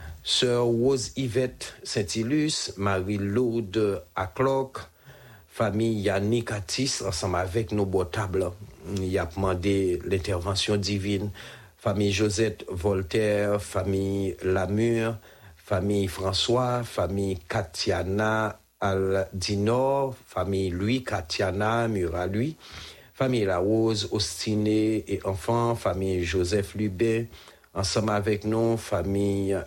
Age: 60-79